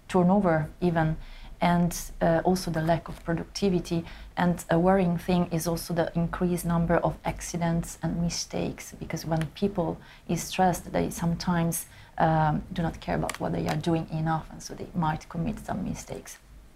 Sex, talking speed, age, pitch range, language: female, 165 wpm, 30-49, 165-180 Hz, English